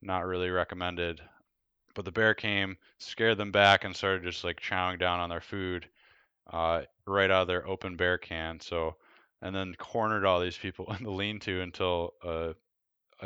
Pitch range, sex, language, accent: 90-145 Hz, male, English, American